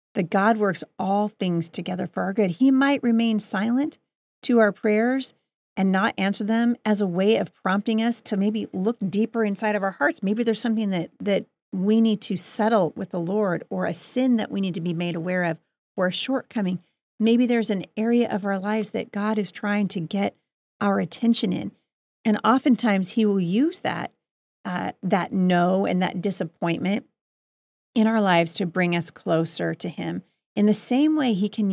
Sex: female